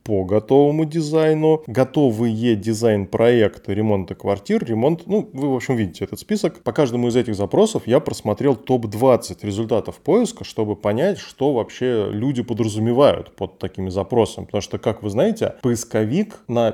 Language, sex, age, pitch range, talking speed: Russian, male, 20-39, 105-130 Hz, 145 wpm